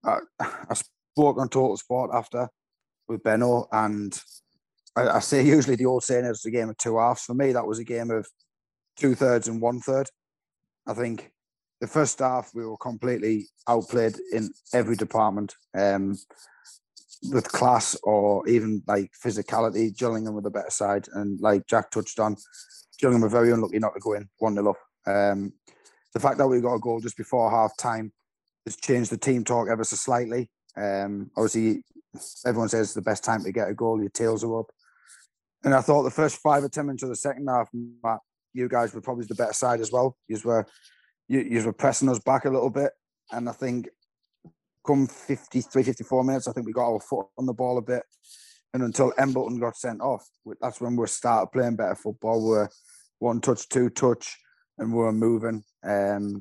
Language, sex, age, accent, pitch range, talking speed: English, male, 30-49, British, 110-125 Hz, 195 wpm